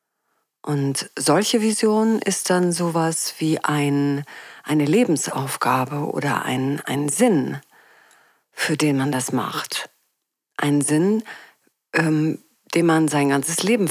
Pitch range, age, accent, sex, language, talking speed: 140-180 Hz, 40-59, German, female, German, 115 wpm